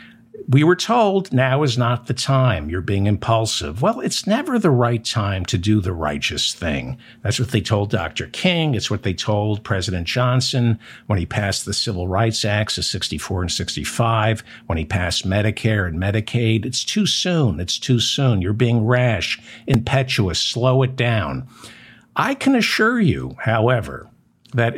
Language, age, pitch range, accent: English, 60-79, 110-150 Hz, American